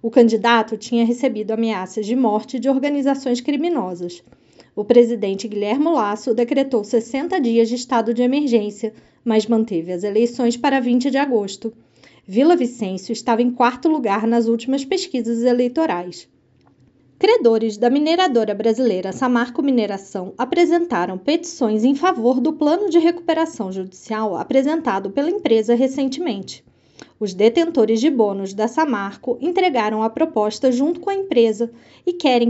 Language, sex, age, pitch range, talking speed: Portuguese, female, 20-39, 220-285 Hz, 135 wpm